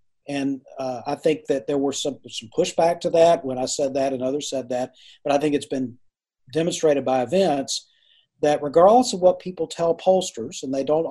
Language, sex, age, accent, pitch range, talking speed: English, male, 40-59, American, 135-170 Hz, 205 wpm